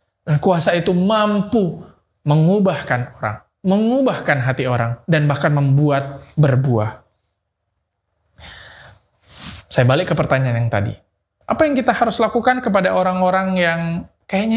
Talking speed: 110 wpm